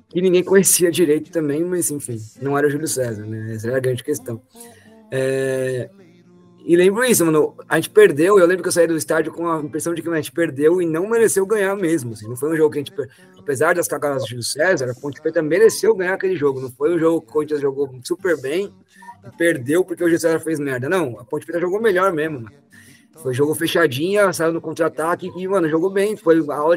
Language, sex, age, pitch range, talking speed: English, male, 20-39, 140-180 Hz, 230 wpm